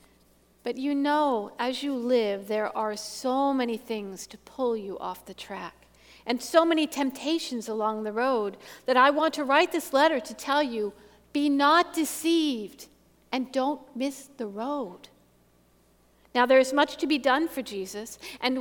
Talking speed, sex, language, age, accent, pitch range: 170 wpm, female, English, 50-69, American, 205-280 Hz